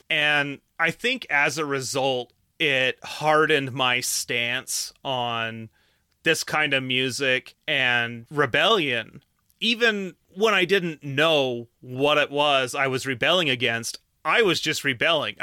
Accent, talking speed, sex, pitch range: American, 130 wpm, male, 130-160 Hz